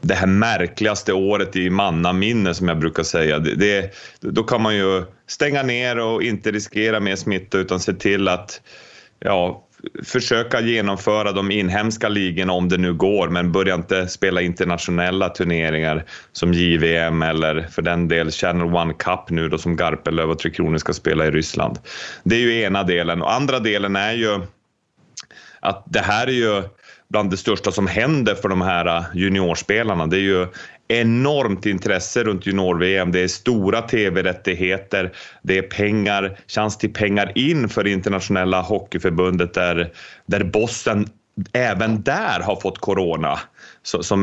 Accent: Swedish